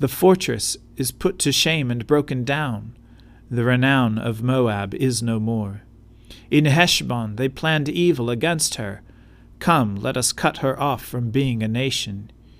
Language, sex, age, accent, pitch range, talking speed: English, male, 40-59, American, 115-145 Hz, 155 wpm